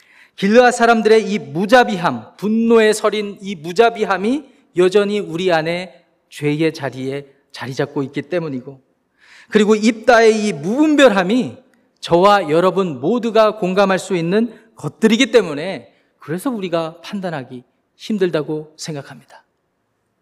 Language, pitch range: Korean, 165-230 Hz